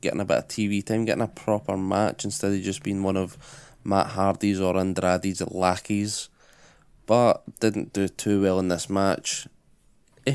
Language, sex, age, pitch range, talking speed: English, male, 20-39, 95-110 Hz, 175 wpm